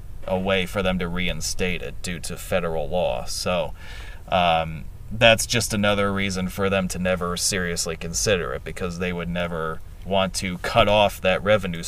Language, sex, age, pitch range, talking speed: English, male, 30-49, 90-110 Hz, 170 wpm